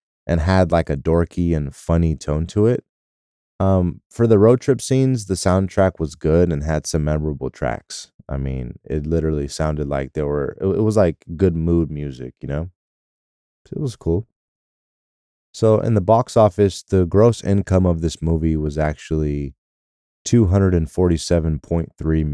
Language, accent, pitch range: English, American, 75-90 Hz